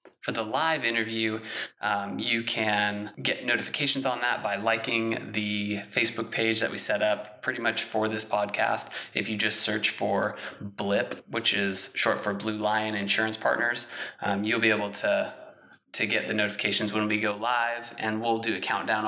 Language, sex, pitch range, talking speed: English, male, 105-115 Hz, 180 wpm